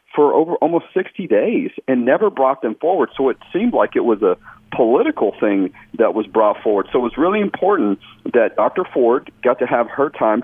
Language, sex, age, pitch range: English, male, 40-59, 110-175 Hz